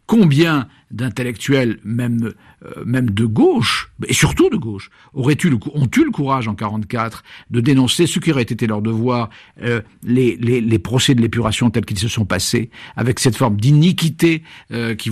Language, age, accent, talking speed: French, 50-69, French, 185 wpm